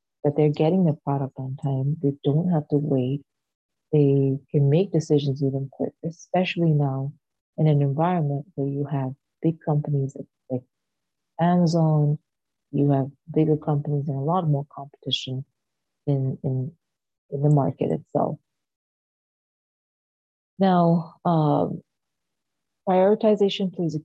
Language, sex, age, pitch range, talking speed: English, female, 30-49, 140-165 Hz, 125 wpm